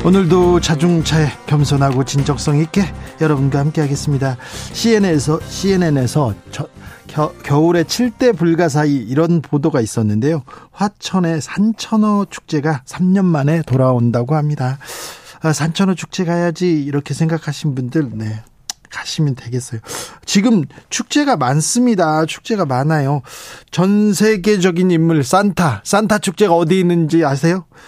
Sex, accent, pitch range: male, native, 140-190 Hz